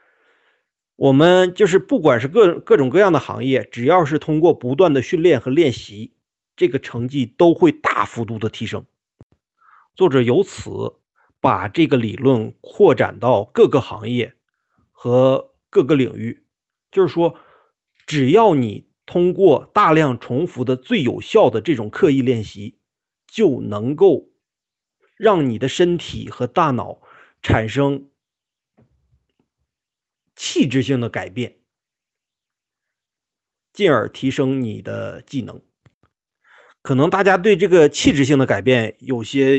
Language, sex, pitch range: Chinese, male, 125-170 Hz